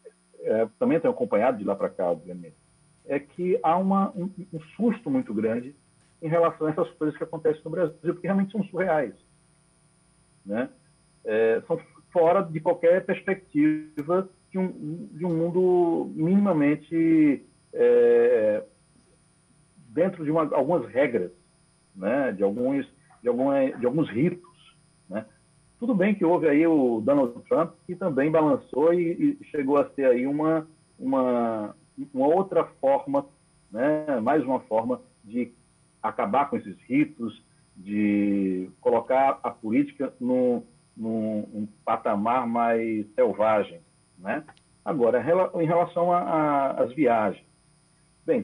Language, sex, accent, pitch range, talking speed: Portuguese, male, Brazilian, 120-195 Hz, 130 wpm